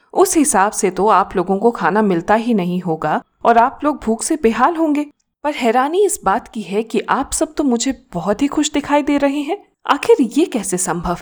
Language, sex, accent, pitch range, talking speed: Hindi, female, native, 190-260 Hz, 220 wpm